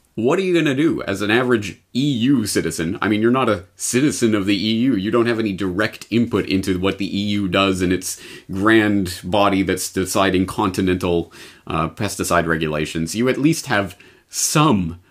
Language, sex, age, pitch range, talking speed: English, male, 30-49, 90-105 Hz, 185 wpm